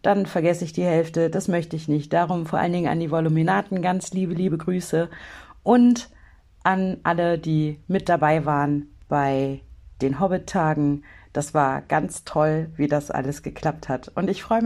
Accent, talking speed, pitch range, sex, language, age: German, 170 wpm, 155-195 Hz, female, German, 50-69